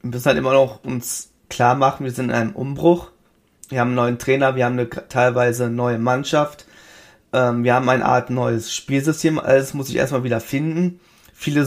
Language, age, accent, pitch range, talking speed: German, 20-39, German, 120-140 Hz, 195 wpm